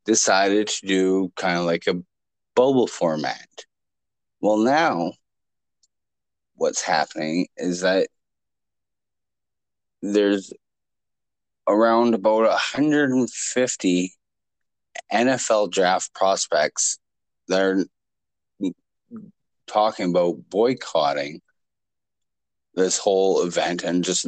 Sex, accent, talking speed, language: male, American, 80 wpm, English